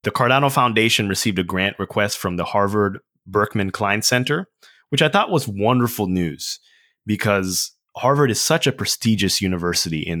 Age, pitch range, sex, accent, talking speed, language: 20-39, 85-110 Hz, male, American, 160 wpm, English